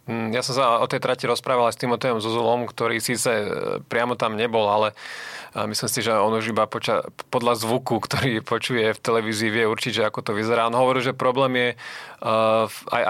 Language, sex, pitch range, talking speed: Slovak, male, 110-120 Hz, 190 wpm